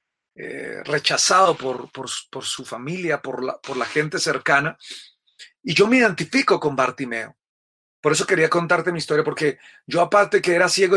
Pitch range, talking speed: 140-175 Hz, 175 wpm